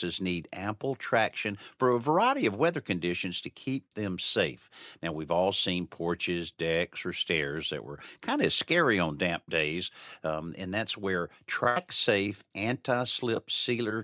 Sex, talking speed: male, 155 wpm